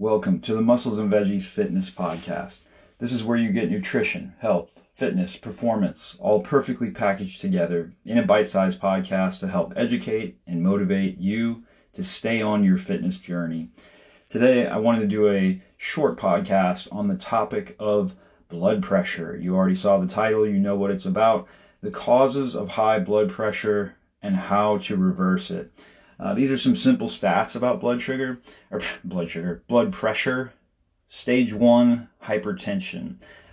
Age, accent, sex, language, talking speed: 30-49, American, male, English, 160 wpm